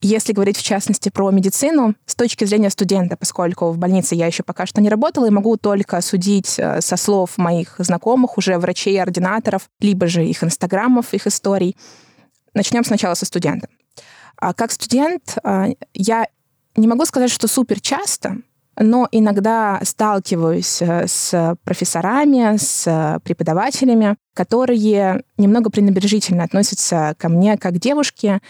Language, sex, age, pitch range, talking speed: Russian, female, 20-39, 185-230 Hz, 135 wpm